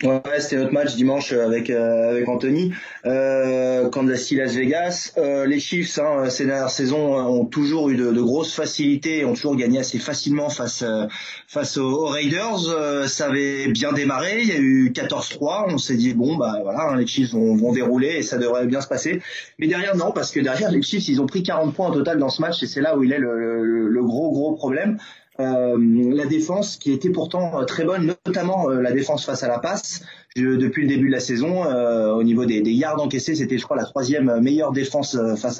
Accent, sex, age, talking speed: French, male, 20-39, 225 wpm